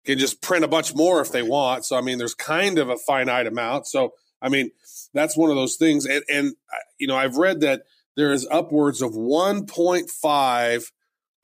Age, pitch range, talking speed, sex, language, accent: 30-49, 125-160 Hz, 200 wpm, male, English, American